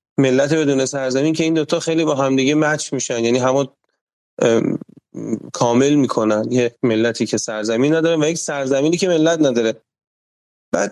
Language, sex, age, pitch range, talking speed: Persian, male, 30-49, 125-160 Hz, 155 wpm